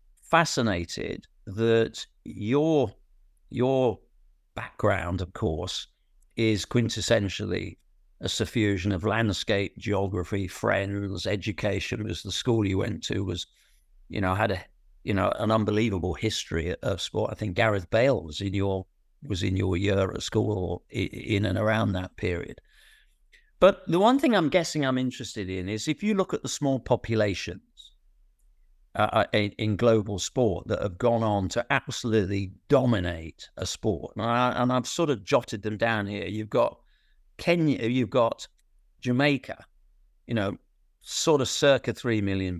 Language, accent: English, British